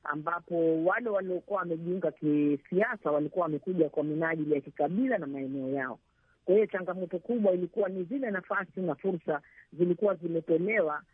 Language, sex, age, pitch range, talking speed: Swahili, female, 50-69, 155-210 Hz, 150 wpm